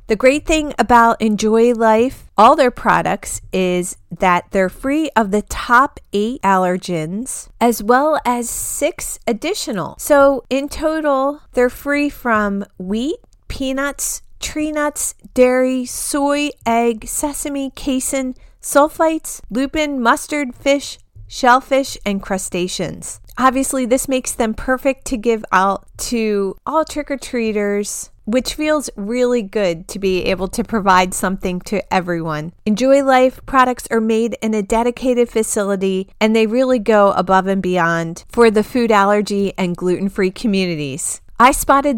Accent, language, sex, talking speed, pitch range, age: American, English, female, 135 wpm, 200-265 Hz, 30-49